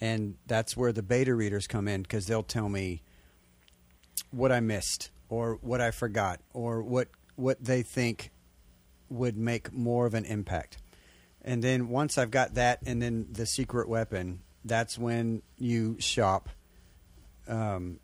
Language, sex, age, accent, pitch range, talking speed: English, male, 40-59, American, 90-120 Hz, 155 wpm